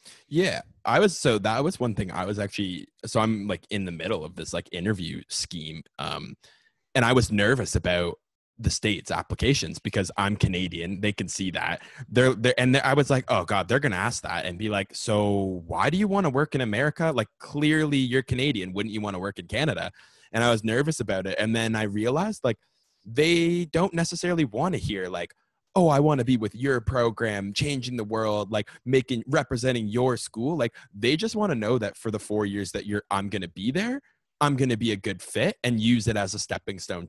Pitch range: 100-135 Hz